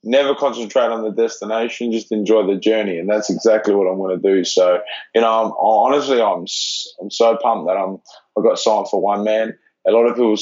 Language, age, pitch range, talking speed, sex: English, 20-39, 100-115 Hz, 225 wpm, male